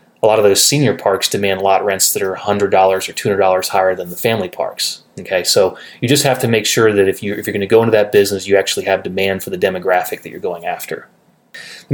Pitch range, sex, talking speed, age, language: 100-120 Hz, male, 245 wpm, 30-49, English